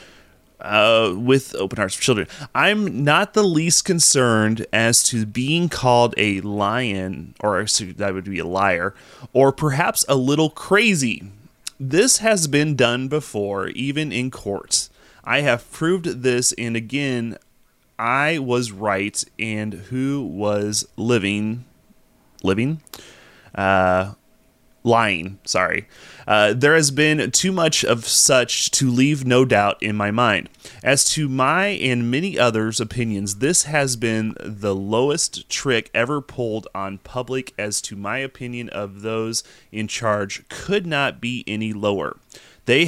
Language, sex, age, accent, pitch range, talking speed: English, male, 30-49, American, 105-140 Hz, 140 wpm